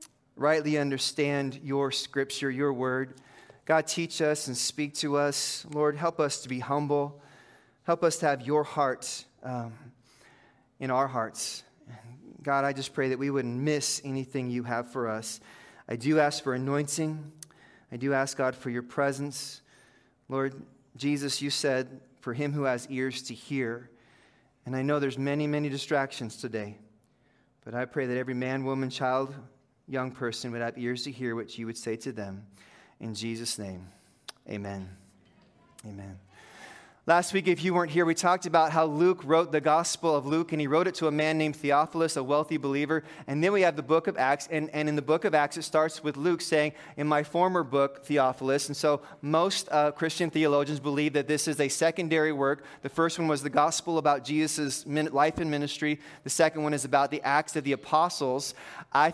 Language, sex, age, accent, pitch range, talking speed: English, male, 30-49, American, 130-150 Hz, 190 wpm